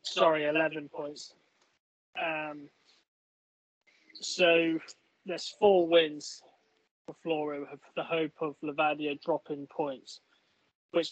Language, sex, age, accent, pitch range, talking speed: English, male, 20-39, British, 145-165 Hz, 95 wpm